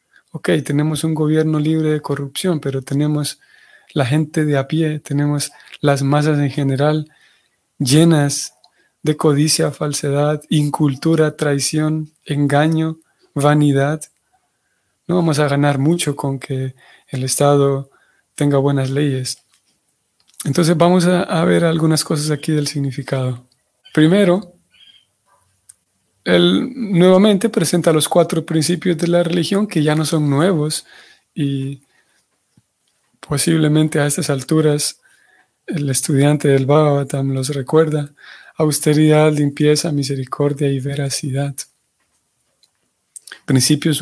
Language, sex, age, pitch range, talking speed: Spanish, male, 30-49, 140-165 Hz, 110 wpm